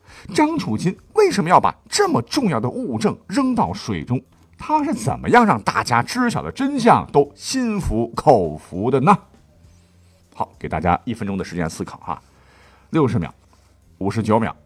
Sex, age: male, 50-69